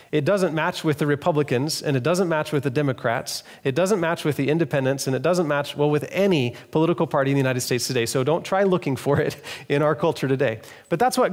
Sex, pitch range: male, 130-170 Hz